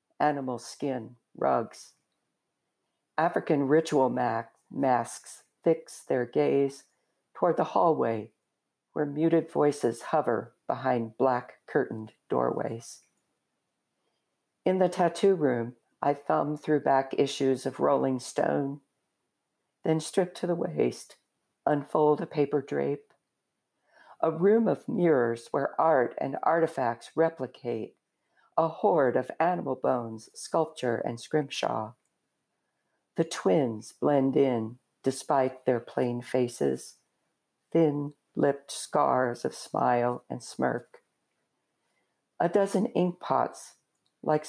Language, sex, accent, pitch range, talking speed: English, female, American, 125-160 Hz, 105 wpm